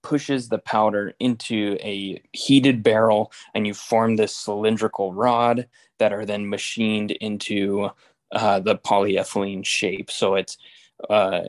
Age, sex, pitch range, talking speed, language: 20-39, male, 105-120 Hz, 130 wpm, English